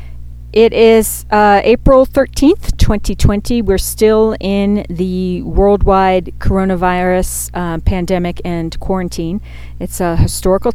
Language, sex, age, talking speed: English, female, 40-59, 105 wpm